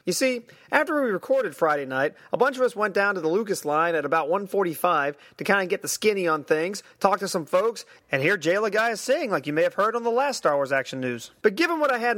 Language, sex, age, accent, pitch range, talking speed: English, male, 30-49, American, 165-235 Hz, 265 wpm